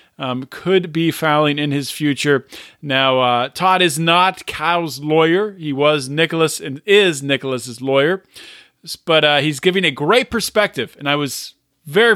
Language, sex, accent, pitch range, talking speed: English, male, American, 145-185 Hz, 160 wpm